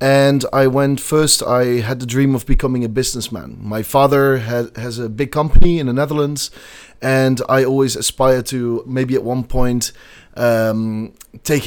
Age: 30-49